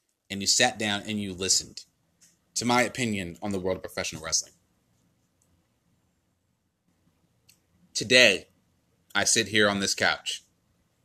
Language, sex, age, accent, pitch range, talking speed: English, male, 30-49, American, 85-110 Hz, 125 wpm